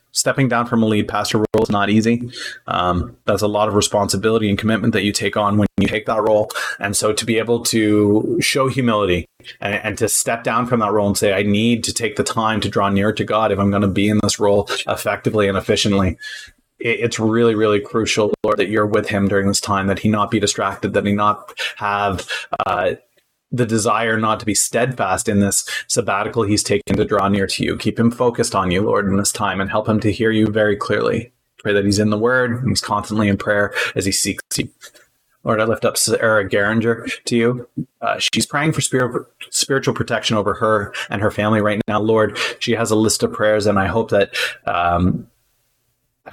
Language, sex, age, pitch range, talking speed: English, male, 30-49, 100-115 Hz, 220 wpm